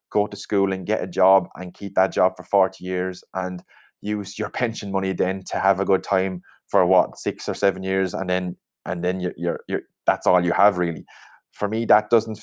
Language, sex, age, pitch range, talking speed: English, male, 20-39, 95-110 Hz, 225 wpm